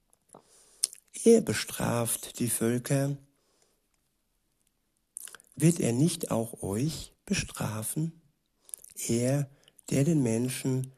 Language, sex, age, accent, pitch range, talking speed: German, male, 60-79, German, 120-145 Hz, 75 wpm